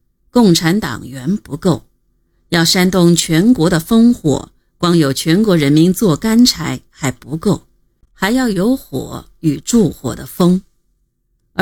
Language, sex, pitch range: Chinese, female, 145-195 Hz